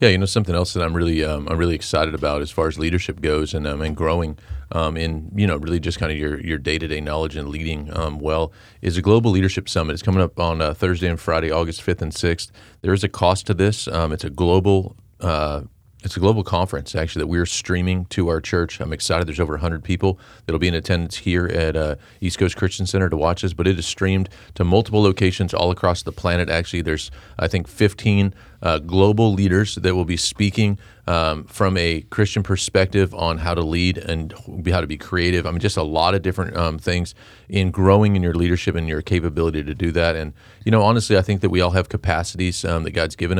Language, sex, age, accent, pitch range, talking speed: English, male, 40-59, American, 80-100 Hz, 235 wpm